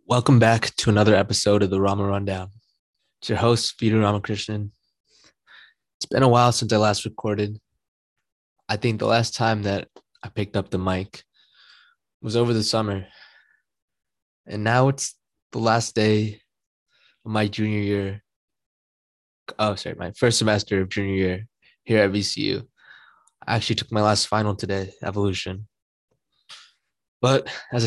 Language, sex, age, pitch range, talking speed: English, male, 20-39, 100-115 Hz, 145 wpm